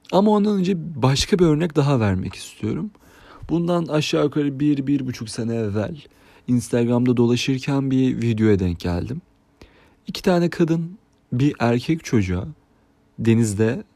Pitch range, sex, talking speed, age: 100-145 Hz, male, 130 wpm, 40-59